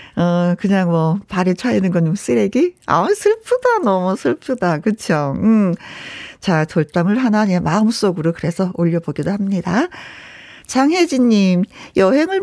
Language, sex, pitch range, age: Korean, female, 180-255 Hz, 40-59